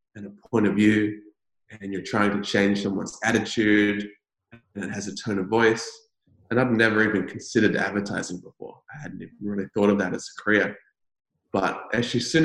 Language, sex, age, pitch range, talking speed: English, male, 20-39, 100-120 Hz, 195 wpm